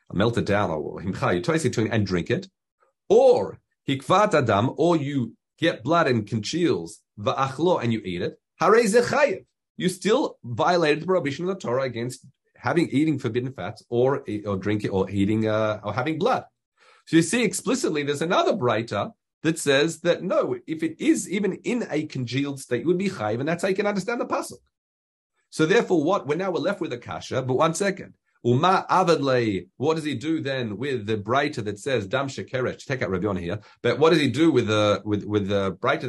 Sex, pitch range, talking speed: male, 120-180 Hz, 185 wpm